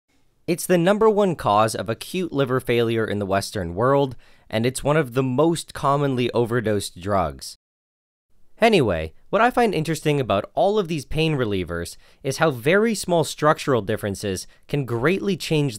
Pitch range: 105-155 Hz